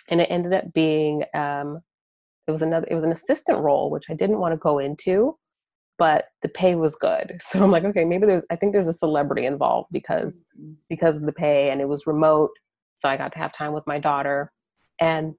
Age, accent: 30-49, American